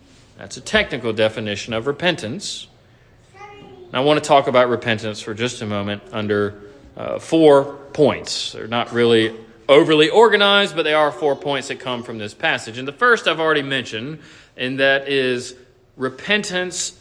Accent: American